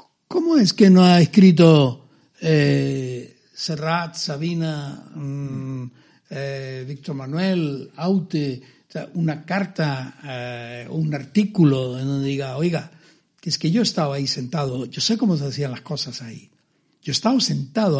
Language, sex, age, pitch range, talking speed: Spanish, male, 60-79, 135-180 Hz, 150 wpm